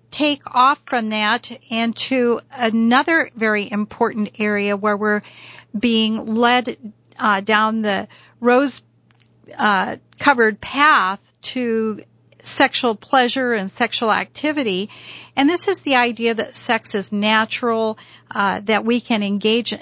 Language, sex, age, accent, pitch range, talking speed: English, female, 50-69, American, 215-250 Hz, 125 wpm